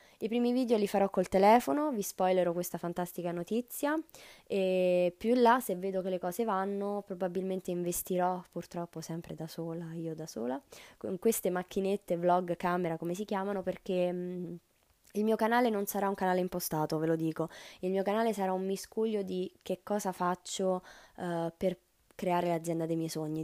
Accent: native